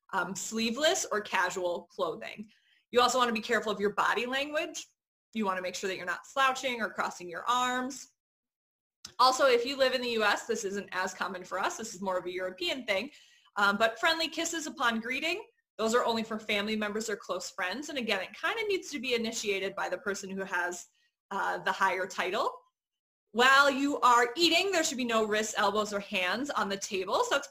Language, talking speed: English, 210 wpm